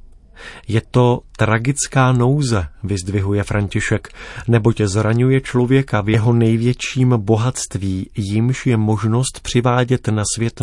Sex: male